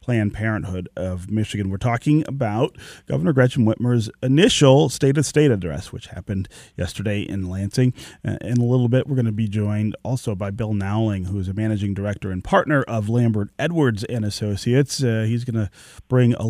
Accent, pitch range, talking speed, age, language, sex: American, 105-135 Hz, 190 wpm, 30-49, English, male